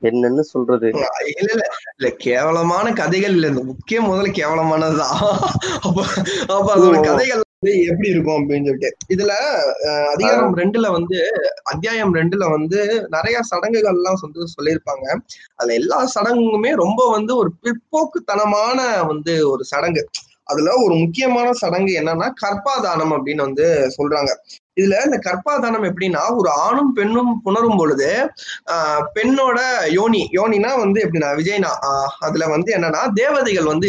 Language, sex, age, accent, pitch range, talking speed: Tamil, male, 20-39, native, 165-235 Hz, 115 wpm